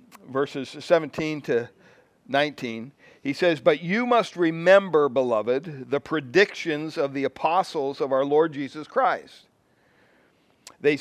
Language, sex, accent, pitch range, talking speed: English, male, American, 130-160 Hz, 120 wpm